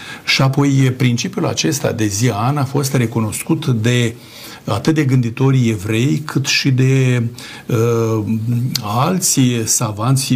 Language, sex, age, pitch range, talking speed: Romanian, male, 60-79, 110-130 Hz, 115 wpm